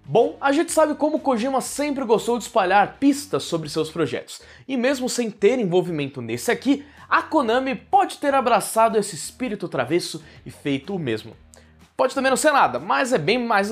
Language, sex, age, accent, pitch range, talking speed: Portuguese, male, 20-39, Brazilian, 170-245 Hz, 185 wpm